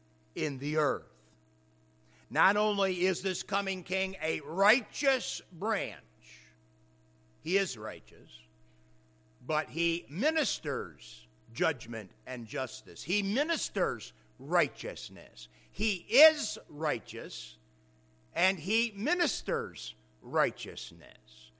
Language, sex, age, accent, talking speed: English, male, 60-79, American, 85 wpm